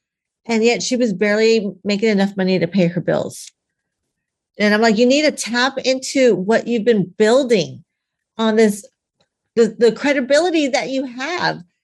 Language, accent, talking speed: English, American, 160 wpm